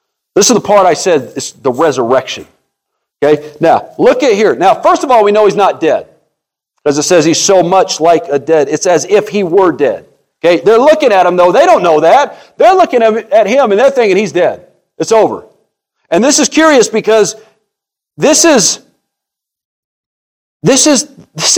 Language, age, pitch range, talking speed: English, 40-59, 190-295 Hz, 190 wpm